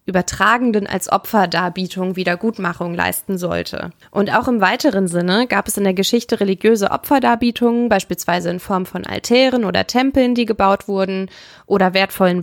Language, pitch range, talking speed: German, 185-225 Hz, 145 wpm